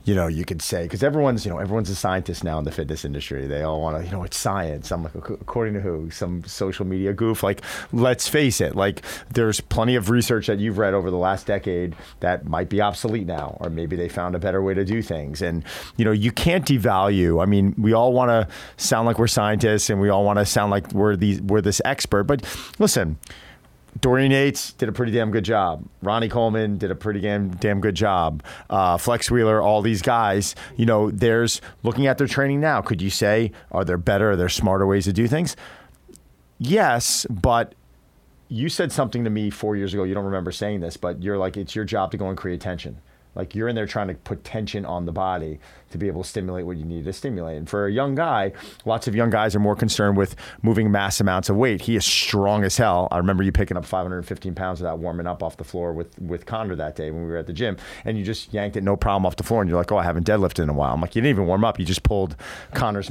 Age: 40-59